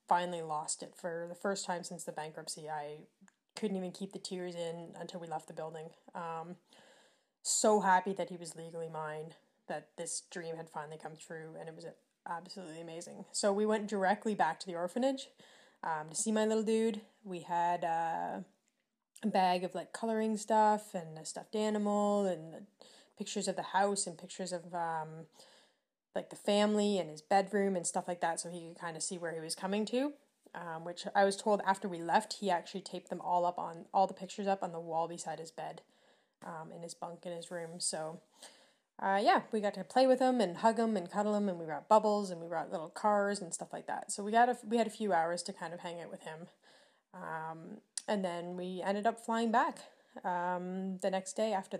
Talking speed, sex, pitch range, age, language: 220 wpm, female, 170-205 Hz, 20-39, English